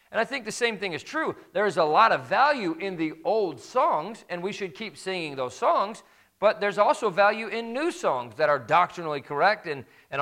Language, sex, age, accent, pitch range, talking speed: English, male, 40-59, American, 135-185 Hz, 225 wpm